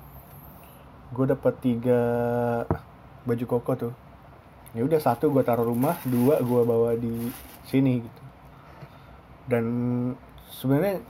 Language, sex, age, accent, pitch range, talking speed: Indonesian, male, 20-39, native, 120-140 Hz, 110 wpm